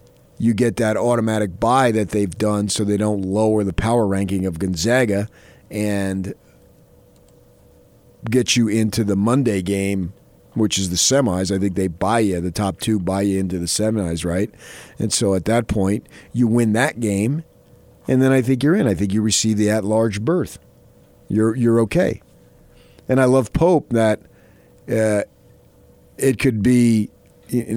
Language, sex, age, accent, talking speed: English, male, 40-59, American, 165 wpm